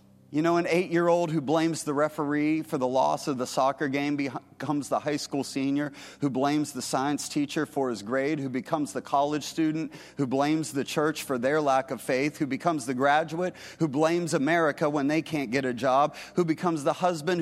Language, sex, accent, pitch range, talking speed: English, male, American, 150-205 Hz, 205 wpm